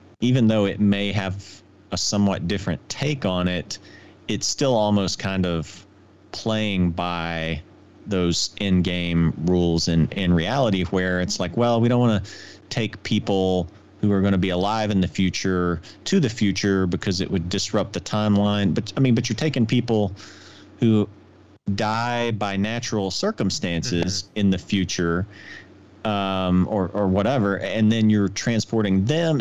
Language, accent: English, American